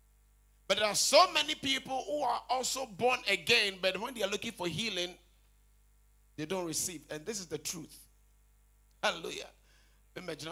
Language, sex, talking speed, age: English, male, 160 wpm, 50-69